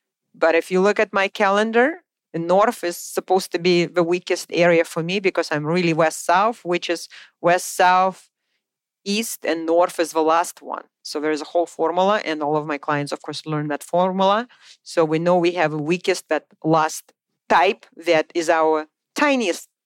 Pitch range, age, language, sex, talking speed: 155-190 Hz, 40-59, English, female, 185 wpm